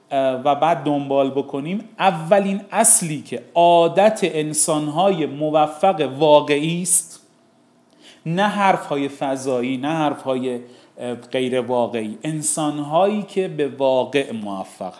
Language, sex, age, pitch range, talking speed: Persian, male, 30-49, 140-195 Hz, 95 wpm